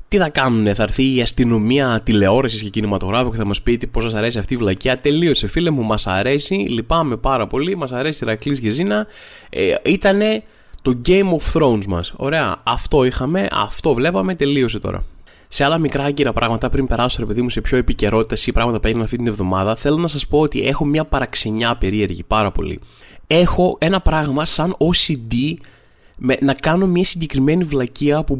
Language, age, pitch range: Greek, 20-39, 115-160 Hz